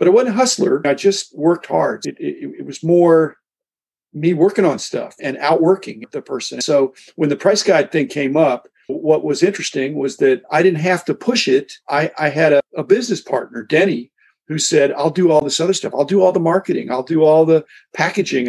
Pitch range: 140-195 Hz